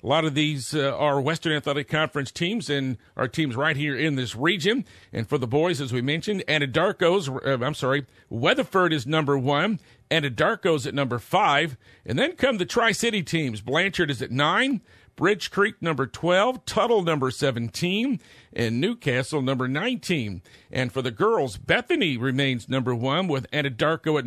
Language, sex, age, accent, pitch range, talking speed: English, male, 50-69, American, 130-170 Hz, 170 wpm